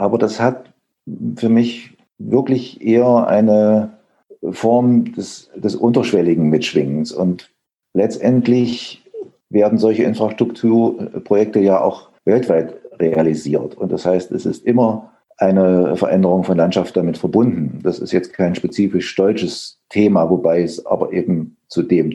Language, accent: German, German